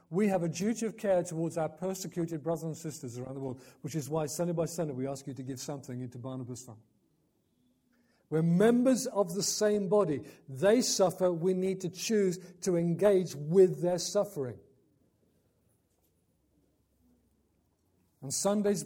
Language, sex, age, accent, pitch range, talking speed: English, male, 50-69, British, 130-170 Hz, 155 wpm